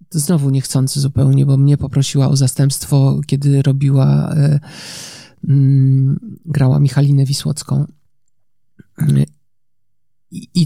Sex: male